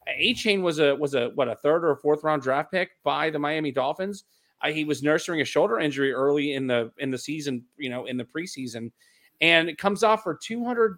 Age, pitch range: 30-49, 145-195 Hz